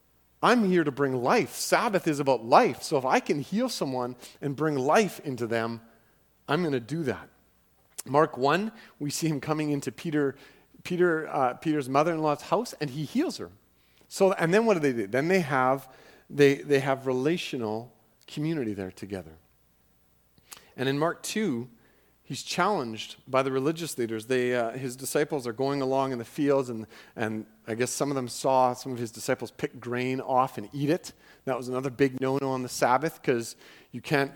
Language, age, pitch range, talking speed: English, 40-59, 115-150 Hz, 190 wpm